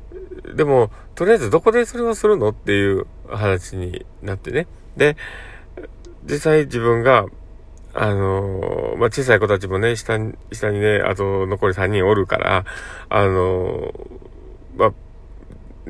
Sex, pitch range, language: male, 95-130 Hz, Japanese